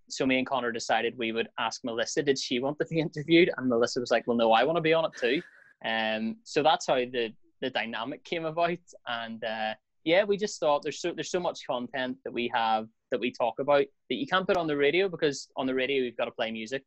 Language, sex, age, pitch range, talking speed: English, male, 10-29, 120-145 Hz, 260 wpm